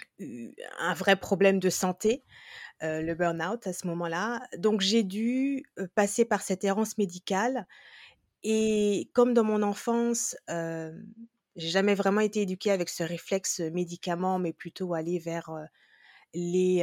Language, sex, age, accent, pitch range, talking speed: French, female, 20-39, French, 170-215 Hz, 145 wpm